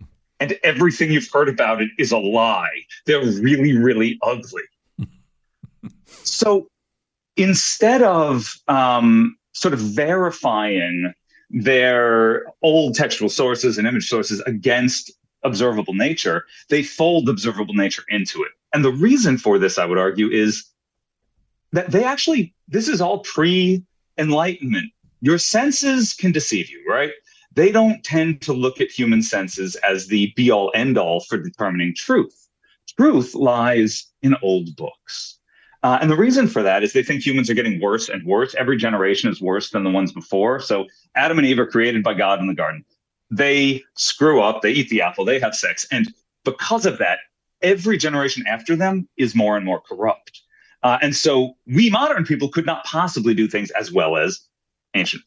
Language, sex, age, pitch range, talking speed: English, male, 30-49, 115-185 Hz, 165 wpm